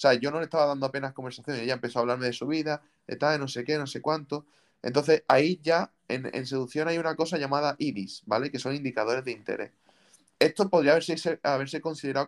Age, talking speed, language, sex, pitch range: 20-39, 225 wpm, Spanish, male, 125-155 Hz